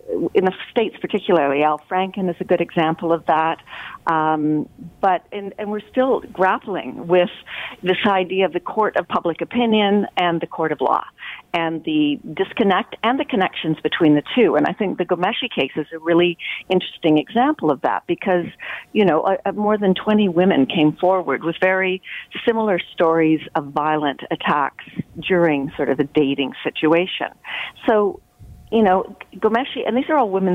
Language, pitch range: English, 155-210 Hz